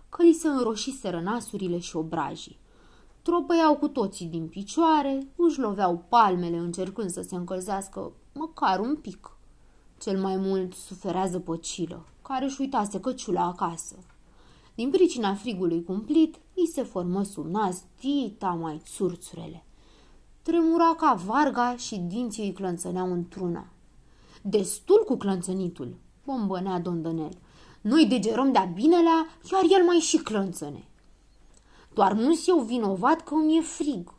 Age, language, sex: 20-39, Romanian, female